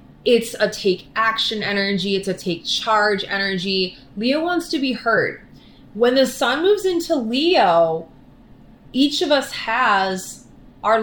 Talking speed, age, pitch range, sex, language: 140 wpm, 20-39, 200-255 Hz, female, English